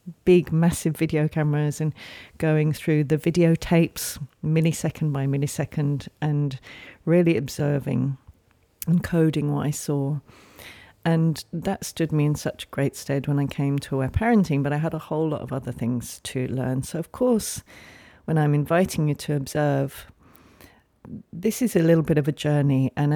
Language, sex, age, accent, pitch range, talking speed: English, female, 40-59, British, 135-160 Hz, 165 wpm